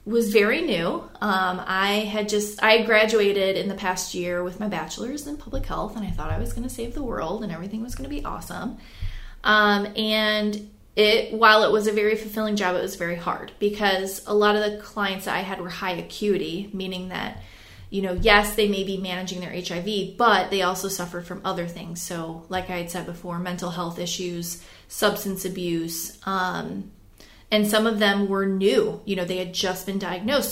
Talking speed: 205 wpm